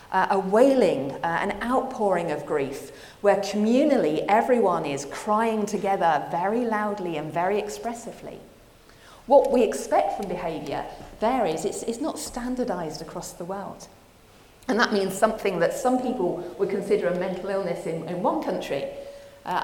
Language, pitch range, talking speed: English, 170-245 Hz, 150 wpm